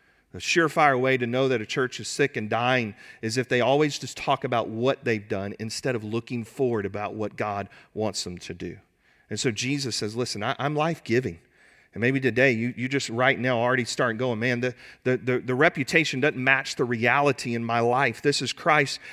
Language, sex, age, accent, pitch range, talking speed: English, male, 40-59, American, 125-165 Hz, 210 wpm